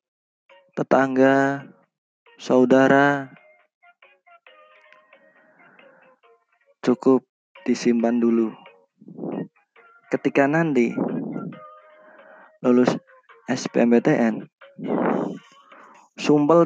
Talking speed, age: 35 wpm, 20-39